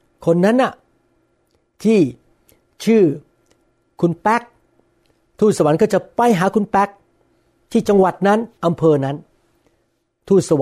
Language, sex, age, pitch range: Thai, male, 60-79, 140-195 Hz